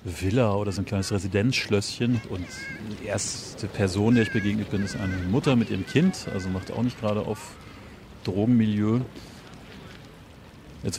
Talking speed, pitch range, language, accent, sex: 155 wpm, 95-115 Hz, German, German, male